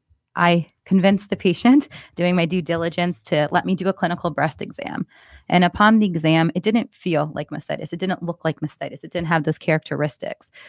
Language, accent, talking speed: English, American, 195 wpm